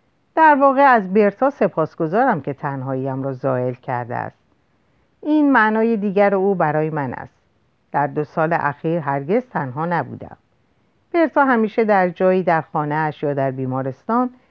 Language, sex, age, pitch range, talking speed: Persian, female, 50-69, 150-235 Hz, 145 wpm